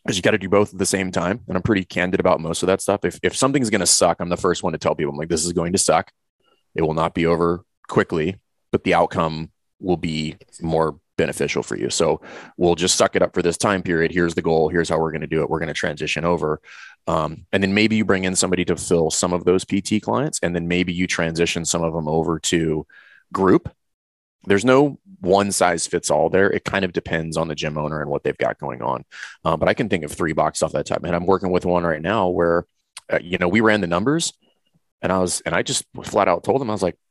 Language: English